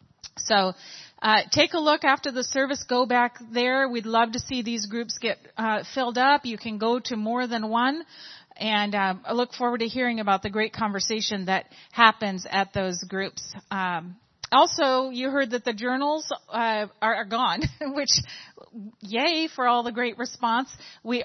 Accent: American